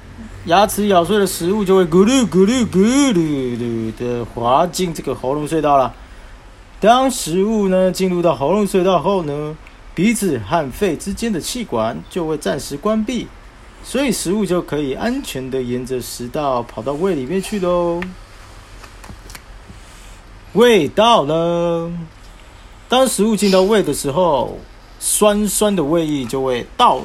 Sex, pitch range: male, 120-205 Hz